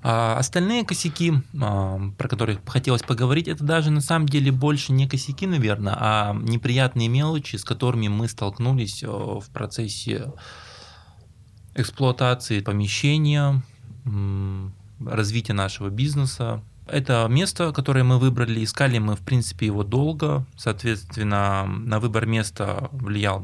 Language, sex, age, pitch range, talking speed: Russian, male, 20-39, 100-130 Hz, 115 wpm